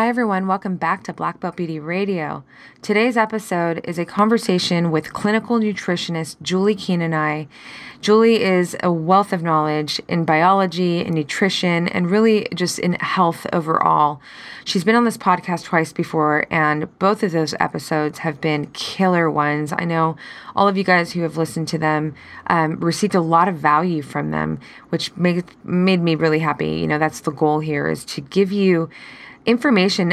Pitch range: 160-210 Hz